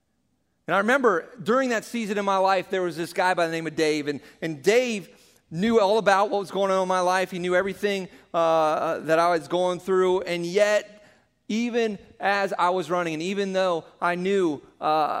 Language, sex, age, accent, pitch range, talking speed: English, male, 40-59, American, 155-195 Hz, 210 wpm